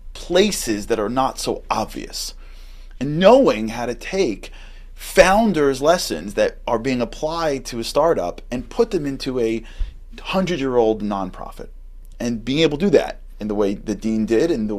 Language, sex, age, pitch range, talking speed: English, male, 30-49, 105-175 Hz, 165 wpm